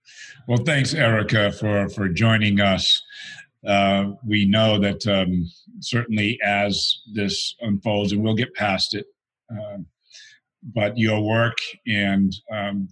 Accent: American